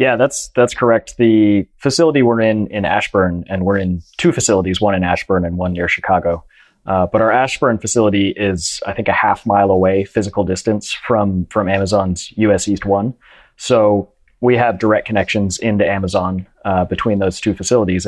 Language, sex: English, male